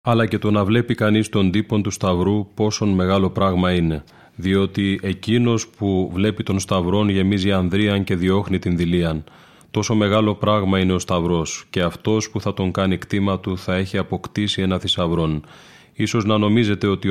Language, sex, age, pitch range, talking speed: Greek, male, 30-49, 90-105 Hz, 170 wpm